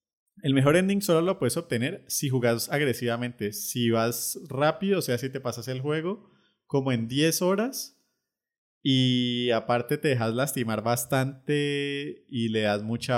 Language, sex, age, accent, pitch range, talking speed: English, male, 30-49, Colombian, 120-155 Hz, 155 wpm